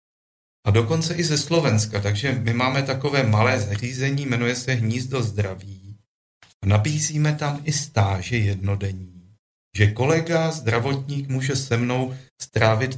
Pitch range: 105-140 Hz